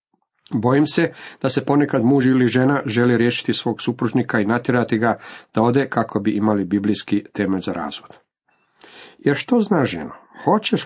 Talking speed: 165 wpm